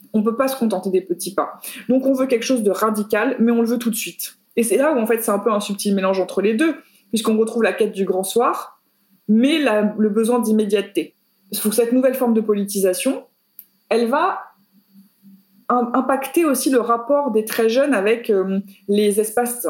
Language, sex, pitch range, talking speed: French, female, 200-255 Hz, 215 wpm